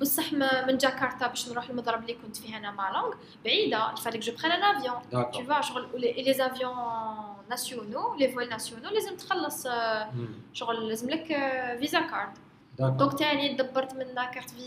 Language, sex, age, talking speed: English, female, 20-39, 115 wpm